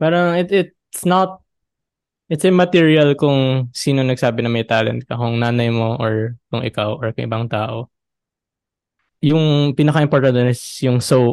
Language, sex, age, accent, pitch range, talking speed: Filipino, male, 20-39, native, 115-145 Hz, 150 wpm